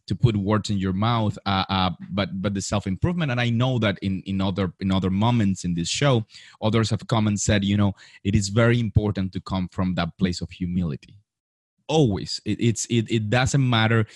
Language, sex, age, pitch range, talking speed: English, male, 30-49, 95-115 Hz, 215 wpm